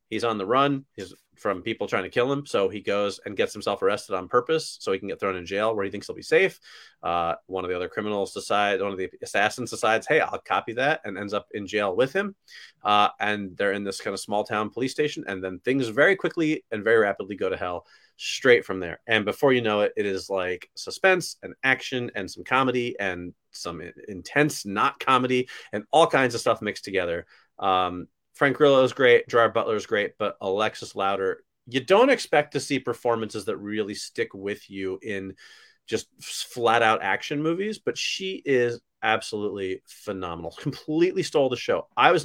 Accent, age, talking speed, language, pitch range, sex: American, 30-49, 205 wpm, English, 100-150 Hz, male